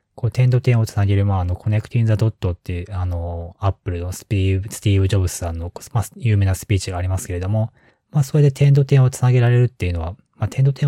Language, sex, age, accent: Japanese, male, 20-39, native